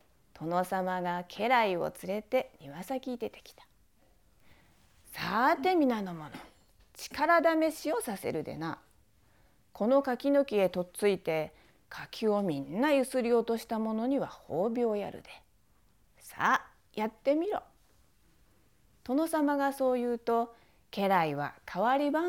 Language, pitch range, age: Japanese, 185-285 Hz, 40-59